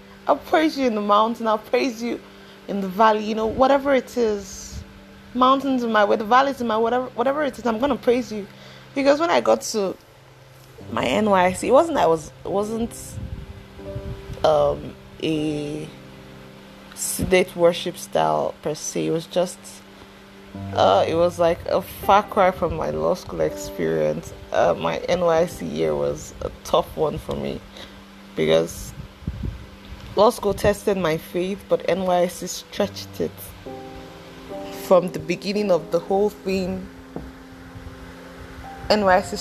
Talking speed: 150 wpm